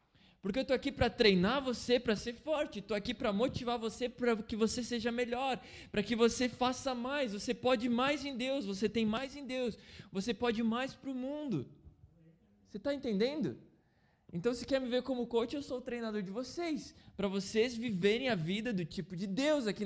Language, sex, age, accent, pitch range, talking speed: Portuguese, male, 20-39, Brazilian, 190-245 Hz, 200 wpm